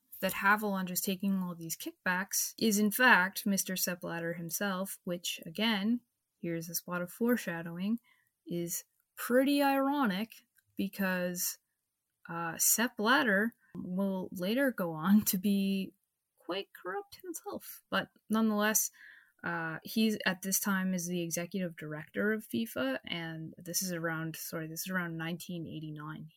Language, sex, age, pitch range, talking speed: English, female, 20-39, 175-215 Hz, 135 wpm